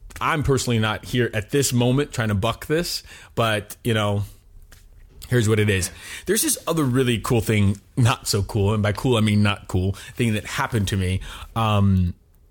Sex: male